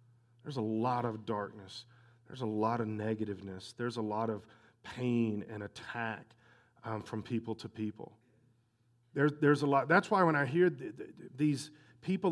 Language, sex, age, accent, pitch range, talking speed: English, male, 40-59, American, 115-145 Hz, 170 wpm